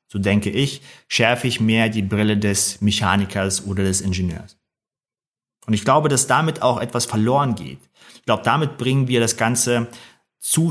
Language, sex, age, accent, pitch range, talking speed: German, male, 30-49, German, 110-130 Hz, 170 wpm